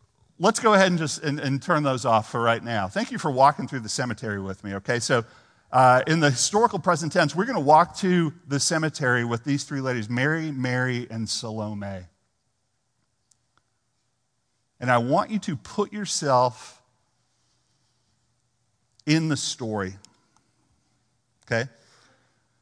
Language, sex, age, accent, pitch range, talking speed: English, male, 50-69, American, 115-155 Hz, 150 wpm